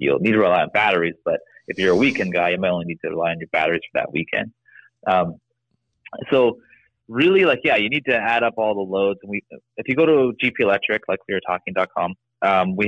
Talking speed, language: 240 wpm, English